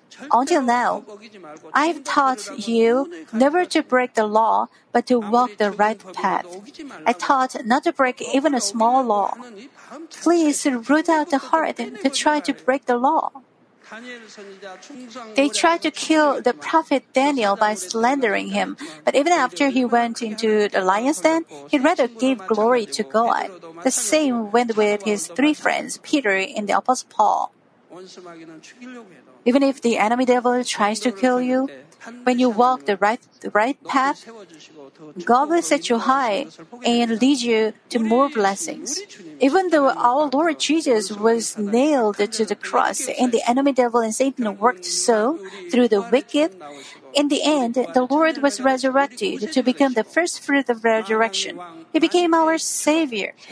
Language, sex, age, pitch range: Korean, female, 50-69, 220-285 Hz